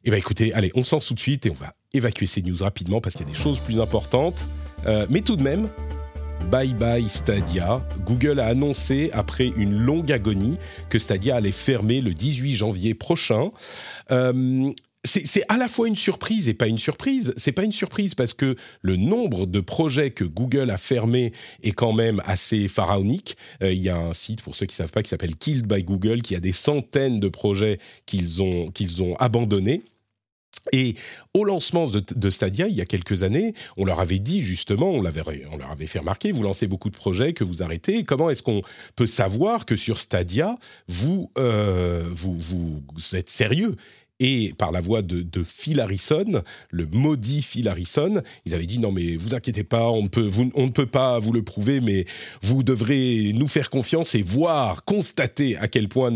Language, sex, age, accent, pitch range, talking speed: French, male, 40-59, French, 95-130 Hz, 205 wpm